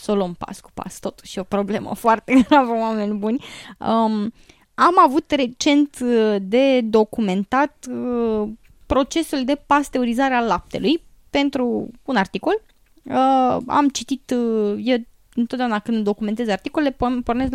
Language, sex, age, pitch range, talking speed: English, female, 20-39, 215-270 Hz, 130 wpm